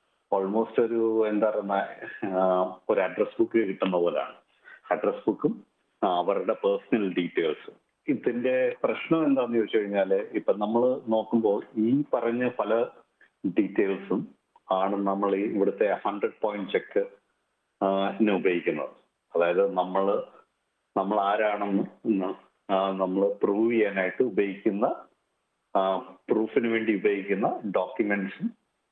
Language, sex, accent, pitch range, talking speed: Malayalam, male, native, 100-130 Hz, 95 wpm